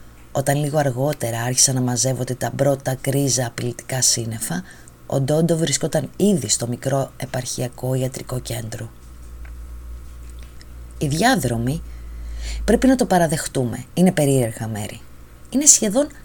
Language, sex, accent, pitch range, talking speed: Greek, female, native, 120-190 Hz, 115 wpm